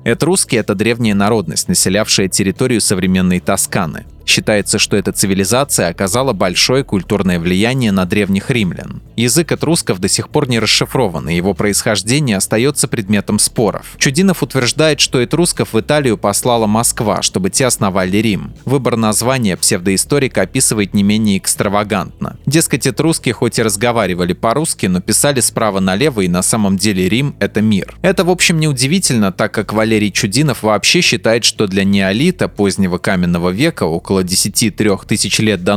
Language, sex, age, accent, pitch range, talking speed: Russian, male, 20-39, native, 100-135 Hz, 155 wpm